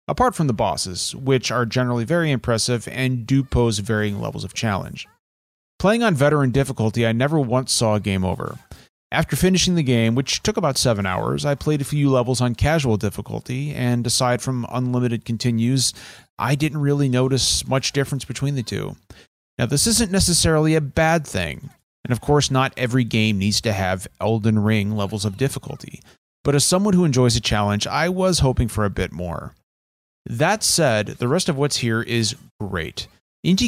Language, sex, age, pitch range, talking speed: English, male, 30-49, 110-140 Hz, 185 wpm